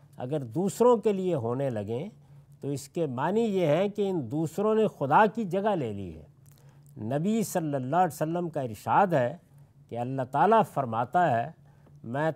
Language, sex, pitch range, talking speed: Urdu, male, 140-195 Hz, 175 wpm